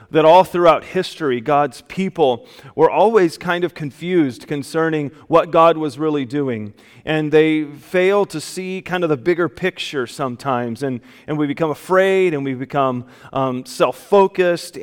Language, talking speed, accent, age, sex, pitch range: English, 155 wpm, American, 30-49, male, 145-170 Hz